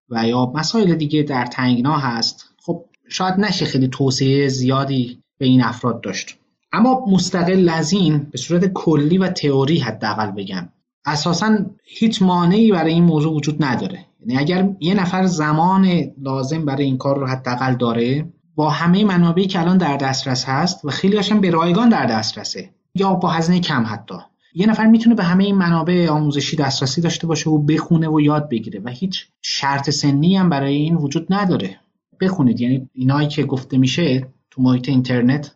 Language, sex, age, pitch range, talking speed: Persian, male, 30-49, 130-175 Hz, 170 wpm